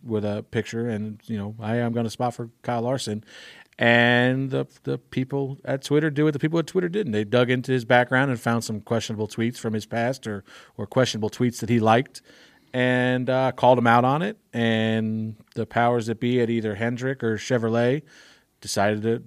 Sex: male